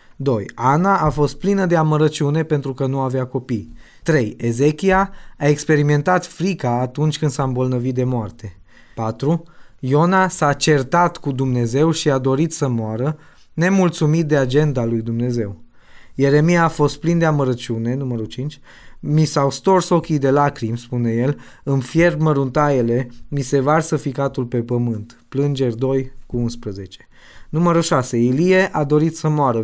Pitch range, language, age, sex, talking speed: 125-155 Hz, Romanian, 20-39, male, 150 wpm